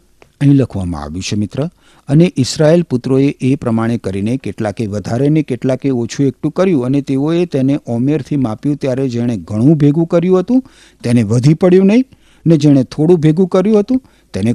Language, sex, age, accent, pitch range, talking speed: Gujarati, male, 50-69, native, 115-170 Hz, 165 wpm